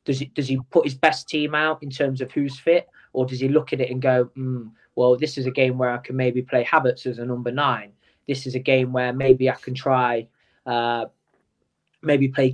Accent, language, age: British, English, 20-39